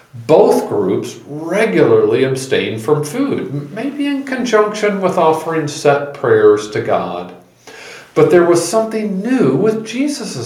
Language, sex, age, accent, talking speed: English, male, 50-69, American, 125 wpm